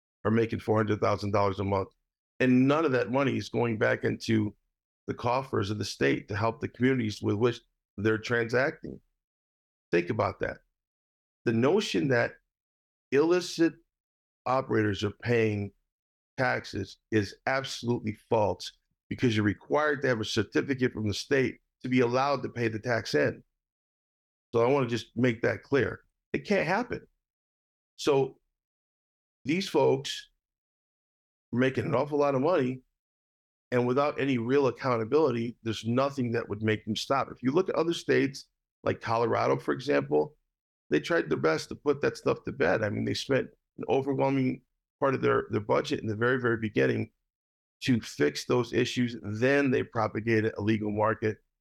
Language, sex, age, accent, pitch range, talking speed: English, male, 50-69, American, 100-125 Hz, 160 wpm